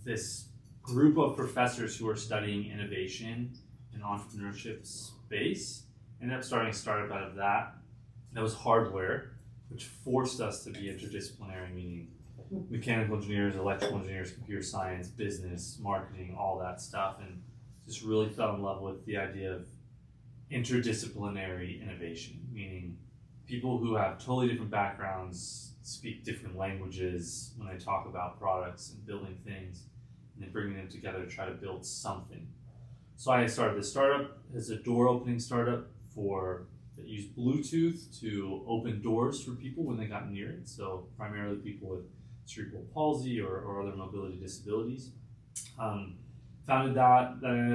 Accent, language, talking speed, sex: American, English, 150 wpm, male